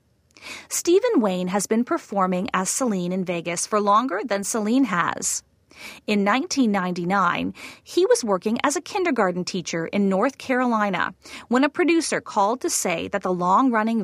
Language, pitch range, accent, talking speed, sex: English, 190-265 Hz, American, 150 wpm, female